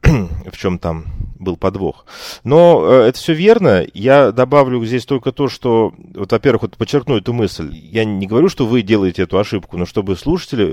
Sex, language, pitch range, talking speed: male, Russian, 95-125 Hz, 180 wpm